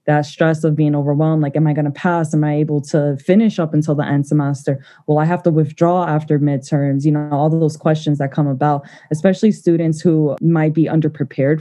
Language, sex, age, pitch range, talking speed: English, female, 20-39, 150-175 Hz, 215 wpm